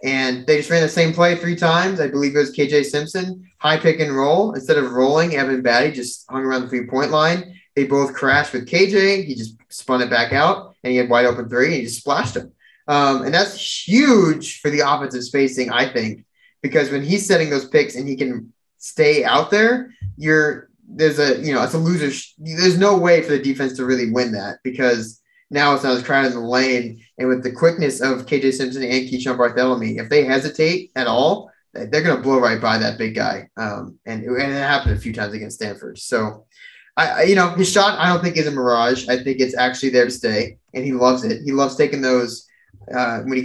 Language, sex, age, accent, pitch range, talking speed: English, male, 20-39, American, 120-155 Hz, 230 wpm